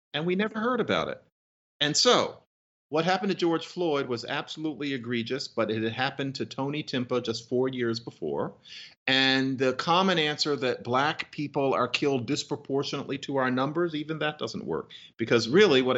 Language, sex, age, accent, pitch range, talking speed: English, male, 40-59, American, 110-150 Hz, 175 wpm